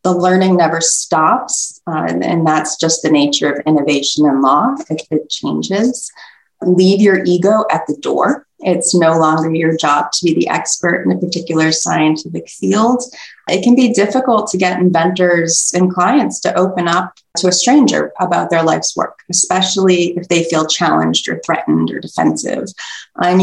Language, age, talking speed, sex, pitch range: English, 30-49, 175 wpm, female, 160-200 Hz